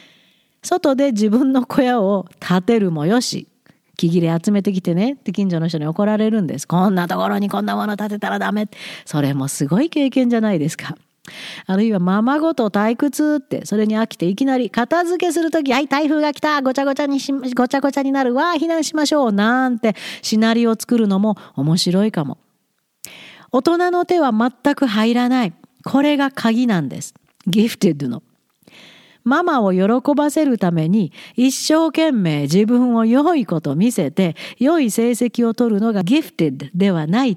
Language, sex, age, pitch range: Japanese, female, 40-59, 195-275 Hz